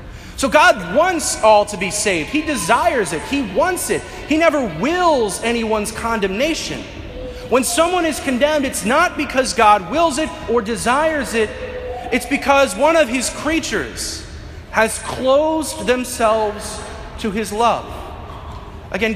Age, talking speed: 30-49, 140 wpm